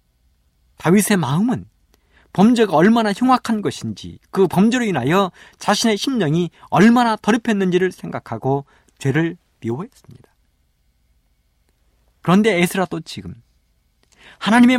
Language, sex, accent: Korean, male, native